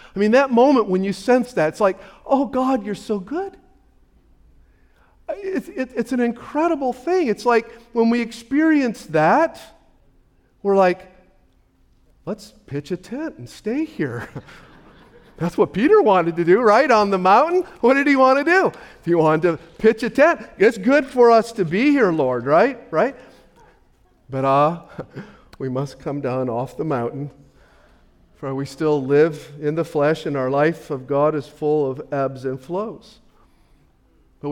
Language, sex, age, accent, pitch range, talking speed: English, male, 50-69, American, 125-205 Hz, 165 wpm